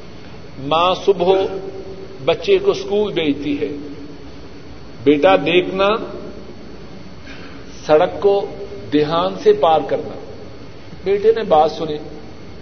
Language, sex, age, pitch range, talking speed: Urdu, male, 60-79, 190-290 Hz, 90 wpm